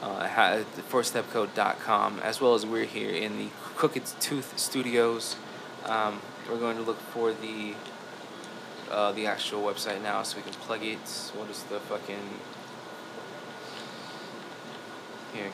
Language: English